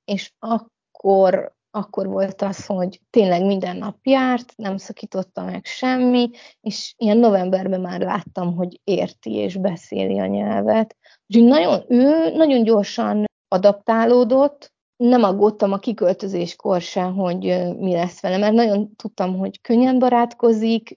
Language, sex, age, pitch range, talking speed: Hungarian, female, 30-49, 200-240 Hz, 130 wpm